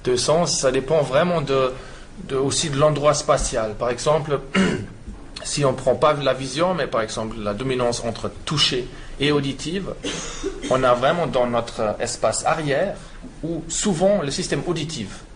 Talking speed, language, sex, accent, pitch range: 155 wpm, French, male, French, 115-145 Hz